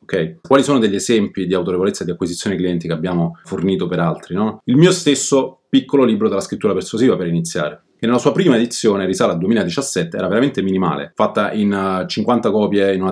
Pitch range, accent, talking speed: 85-110 Hz, native, 190 wpm